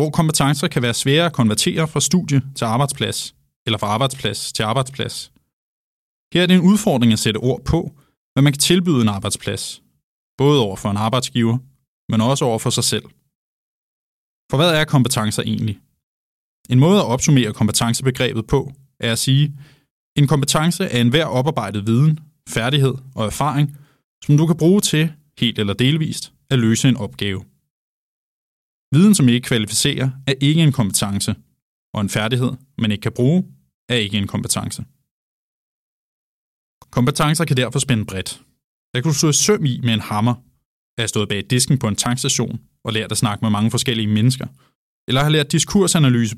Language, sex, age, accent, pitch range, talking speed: Danish, male, 20-39, native, 110-145 Hz, 170 wpm